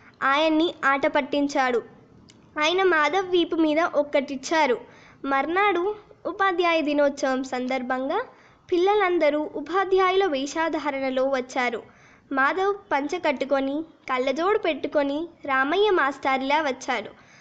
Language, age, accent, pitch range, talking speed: Telugu, 20-39, native, 270-335 Hz, 85 wpm